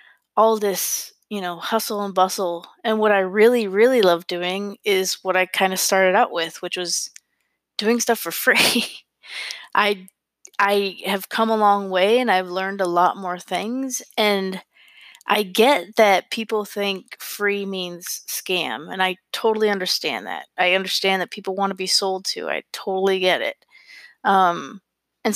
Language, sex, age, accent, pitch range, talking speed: English, female, 20-39, American, 185-225 Hz, 170 wpm